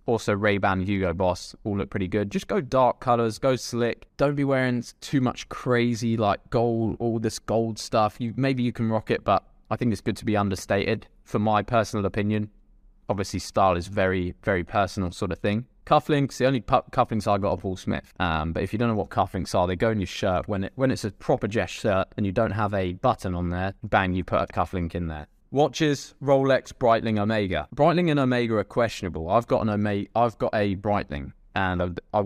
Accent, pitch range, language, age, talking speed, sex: British, 95-115 Hz, English, 20-39, 220 wpm, male